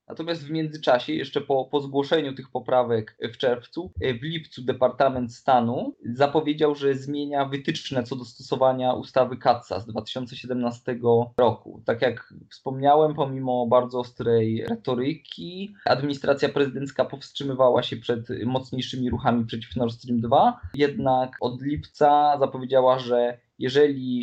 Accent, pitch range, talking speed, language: native, 120-140 Hz, 125 wpm, Polish